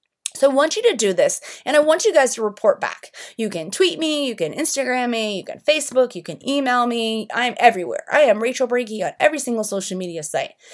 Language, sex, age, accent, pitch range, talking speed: English, female, 30-49, American, 195-285 Hz, 235 wpm